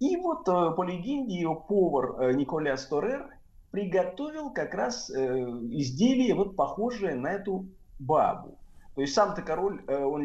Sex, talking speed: male, 130 wpm